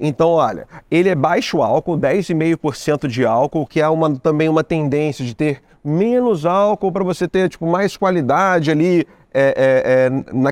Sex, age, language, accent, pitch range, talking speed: male, 40-59, Portuguese, Brazilian, 140-185 Hz, 170 wpm